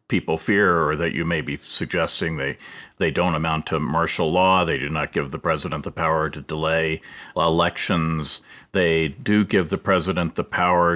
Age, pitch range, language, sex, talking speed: 50-69, 85-115 Hz, English, male, 180 wpm